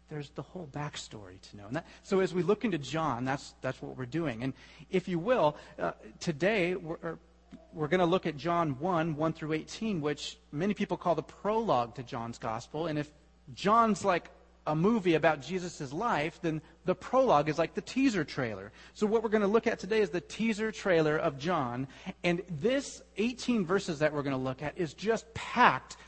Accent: American